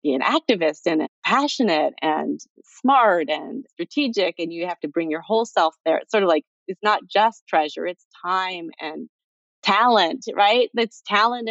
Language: English